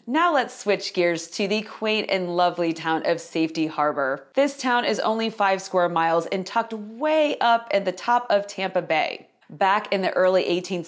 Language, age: English, 30-49